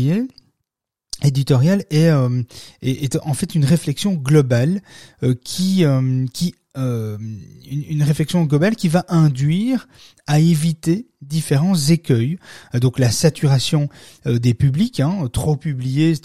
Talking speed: 125 wpm